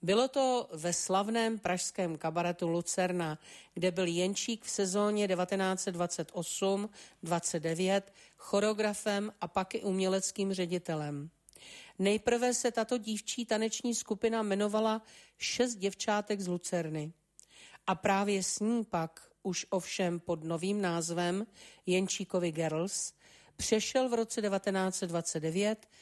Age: 40-59